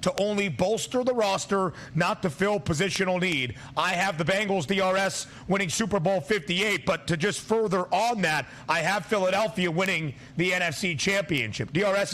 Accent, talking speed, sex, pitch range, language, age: American, 165 wpm, male, 160-205 Hz, English, 40-59